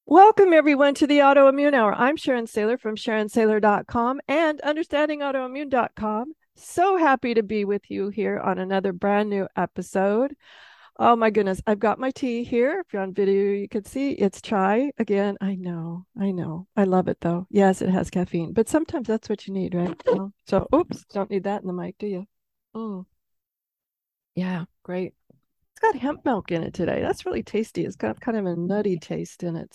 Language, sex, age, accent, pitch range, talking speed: English, female, 40-59, American, 195-260 Hz, 190 wpm